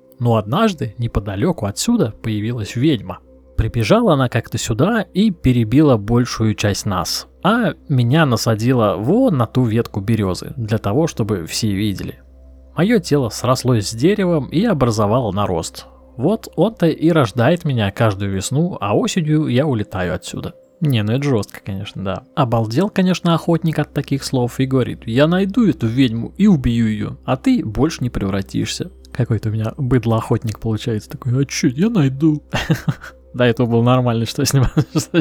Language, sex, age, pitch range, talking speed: Russian, male, 20-39, 110-150 Hz, 155 wpm